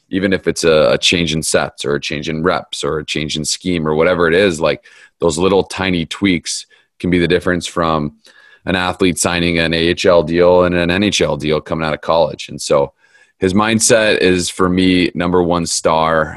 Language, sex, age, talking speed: English, male, 30-49, 200 wpm